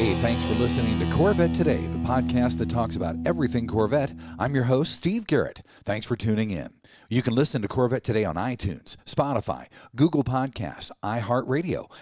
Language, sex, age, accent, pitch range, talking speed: English, male, 50-69, American, 100-135 Hz, 175 wpm